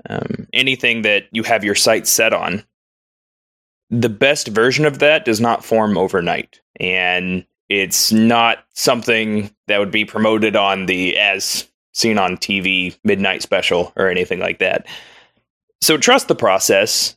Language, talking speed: English, 145 wpm